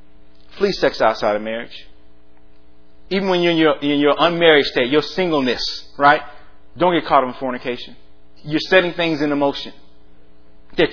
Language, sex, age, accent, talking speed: English, male, 40-59, American, 160 wpm